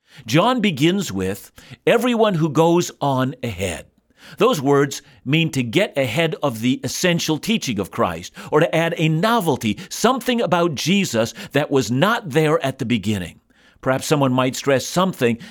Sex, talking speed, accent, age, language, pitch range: male, 155 wpm, American, 50-69, English, 125-175 Hz